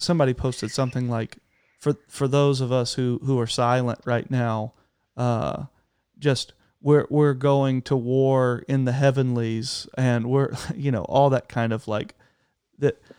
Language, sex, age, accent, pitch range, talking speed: English, male, 40-59, American, 120-145 Hz, 160 wpm